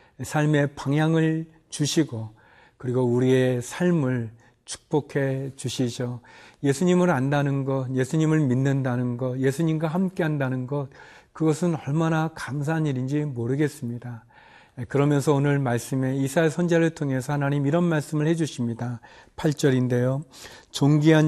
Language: Korean